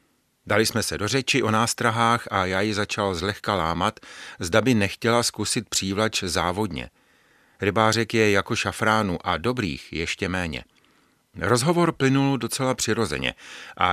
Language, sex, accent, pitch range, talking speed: Czech, male, native, 90-115 Hz, 140 wpm